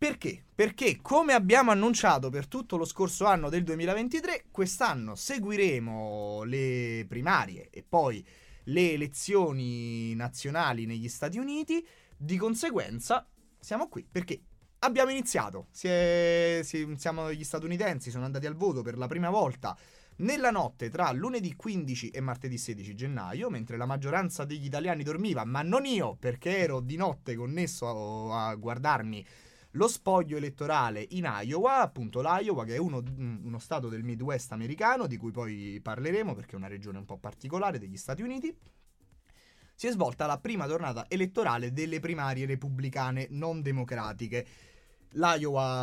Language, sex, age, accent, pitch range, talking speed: Italian, male, 30-49, native, 120-180 Hz, 150 wpm